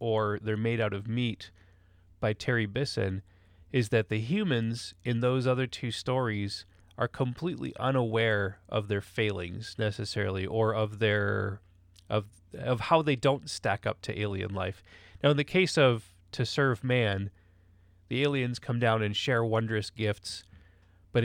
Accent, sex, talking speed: American, male, 155 wpm